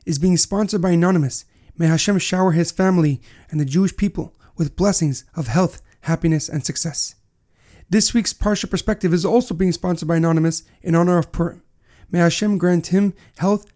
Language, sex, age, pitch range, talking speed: English, male, 30-49, 165-200 Hz, 175 wpm